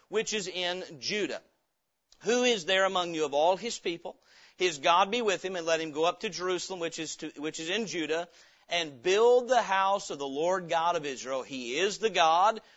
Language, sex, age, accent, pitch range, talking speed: English, male, 40-59, American, 160-210 Hz, 215 wpm